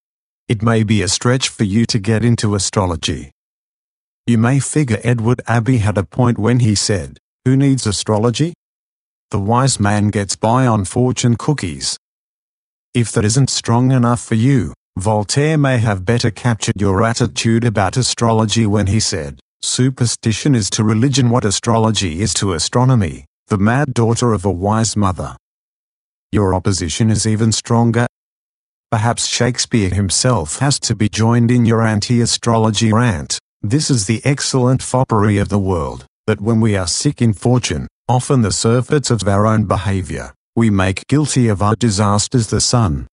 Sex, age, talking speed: male, 50-69, 160 wpm